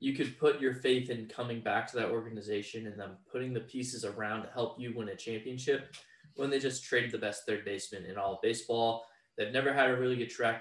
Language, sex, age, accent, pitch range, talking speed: English, male, 20-39, American, 115-140 Hz, 240 wpm